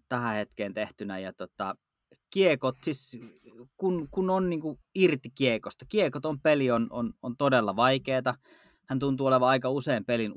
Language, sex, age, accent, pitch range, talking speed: Finnish, male, 30-49, native, 115-150 Hz, 155 wpm